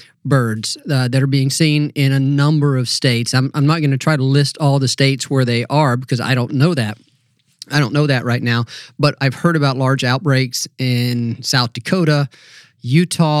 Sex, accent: male, American